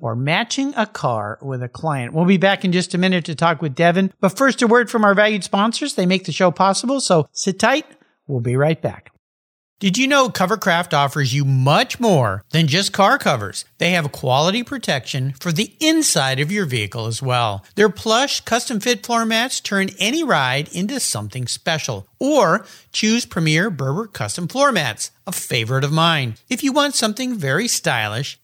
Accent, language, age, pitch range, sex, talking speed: American, English, 50-69, 140-225 Hz, male, 190 wpm